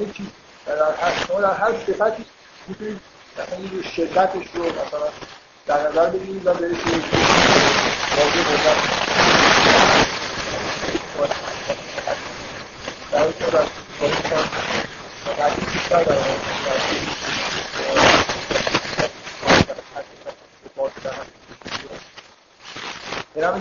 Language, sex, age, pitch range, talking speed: Persian, male, 50-69, 155-195 Hz, 45 wpm